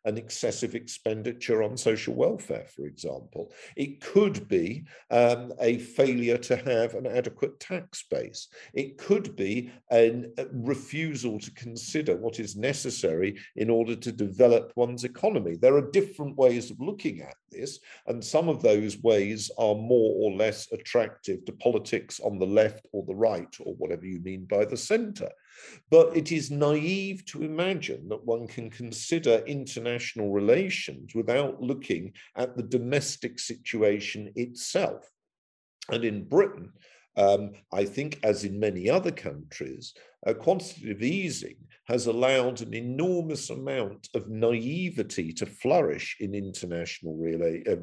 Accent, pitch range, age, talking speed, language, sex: British, 110-150 Hz, 50-69, 145 wpm, English, male